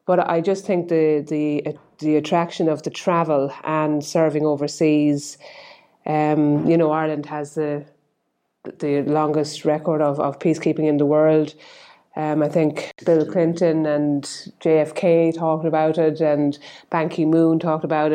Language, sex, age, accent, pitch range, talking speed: English, female, 30-49, Irish, 150-170 Hz, 145 wpm